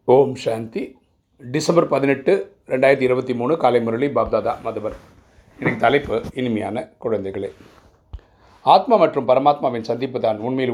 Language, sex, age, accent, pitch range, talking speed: Tamil, male, 30-49, native, 105-130 Hz, 115 wpm